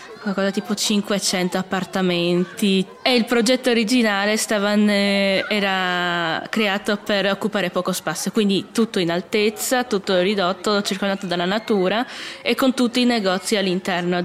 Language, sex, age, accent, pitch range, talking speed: Italian, female, 20-39, native, 175-210 Hz, 125 wpm